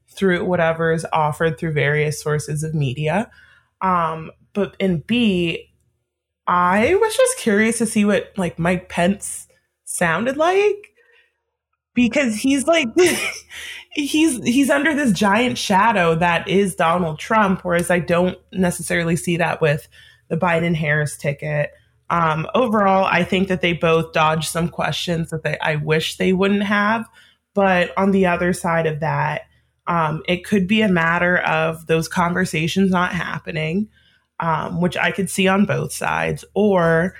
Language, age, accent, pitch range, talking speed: English, 20-39, American, 165-200 Hz, 150 wpm